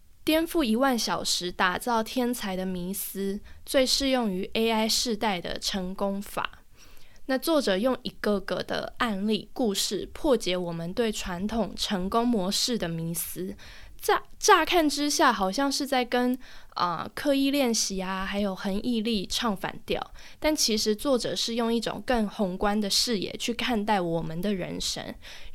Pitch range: 195-250 Hz